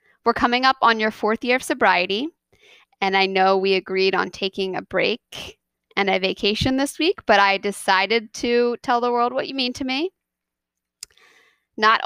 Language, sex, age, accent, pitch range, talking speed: English, female, 20-39, American, 190-230 Hz, 180 wpm